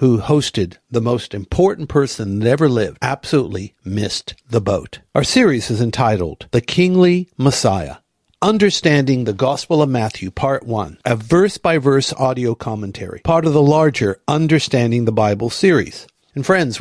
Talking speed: 145 wpm